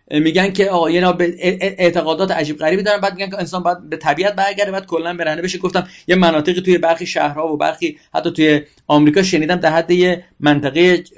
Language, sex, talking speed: Persian, male, 180 wpm